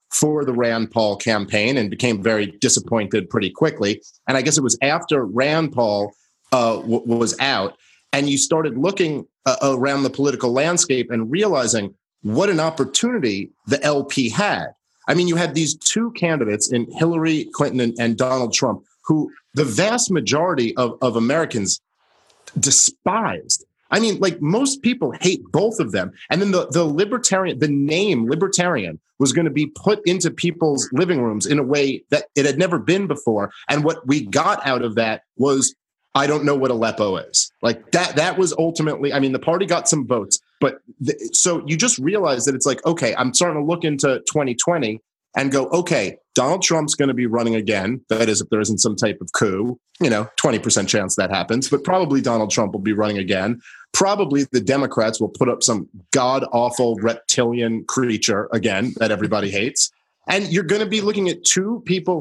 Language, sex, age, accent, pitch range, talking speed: English, male, 30-49, American, 115-165 Hz, 185 wpm